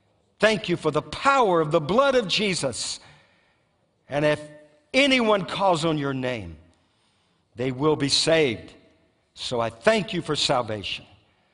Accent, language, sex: American, English, male